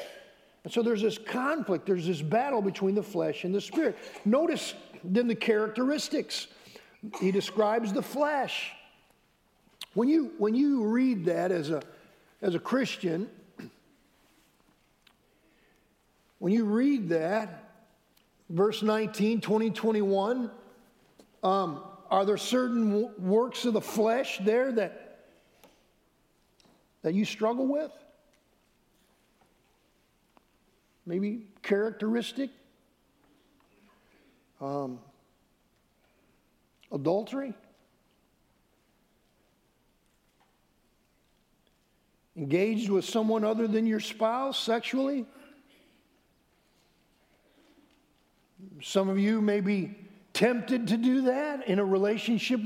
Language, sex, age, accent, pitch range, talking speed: English, male, 50-69, American, 200-250 Hz, 90 wpm